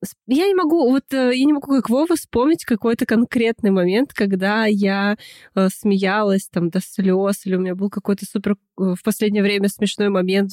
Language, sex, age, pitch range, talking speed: Russian, female, 20-39, 205-250 Hz, 170 wpm